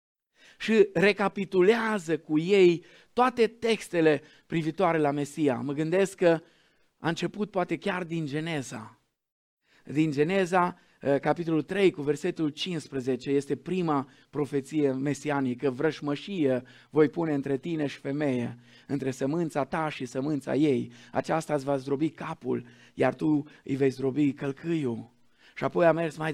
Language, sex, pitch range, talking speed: Romanian, male, 135-165 Hz, 130 wpm